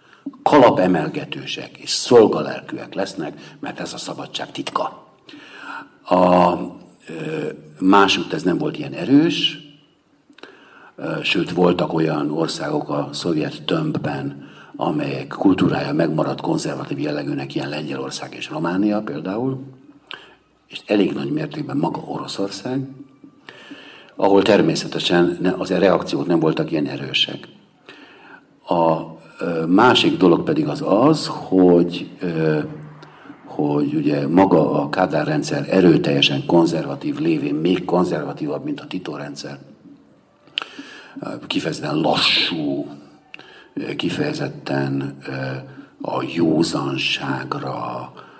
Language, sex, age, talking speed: Hungarian, male, 60-79, 90 wpm